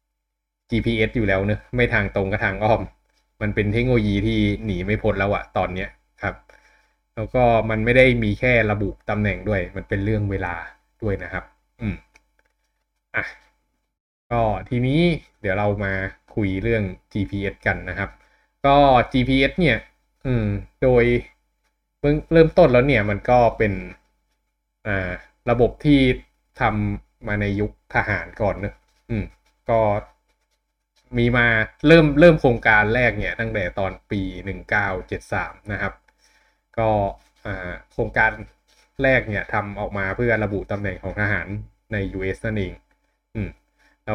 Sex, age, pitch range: male, 20-39, 95-115 Hz